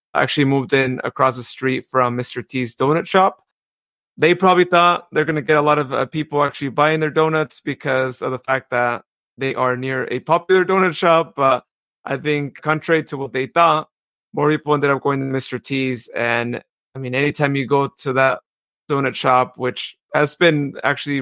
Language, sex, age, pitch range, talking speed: English, male, 30-49, 130-155 Hz, 195 wpm